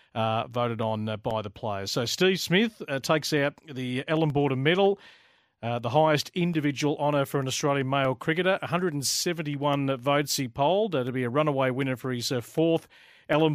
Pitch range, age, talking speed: 120-155 Hz, 40-59, 185 wpm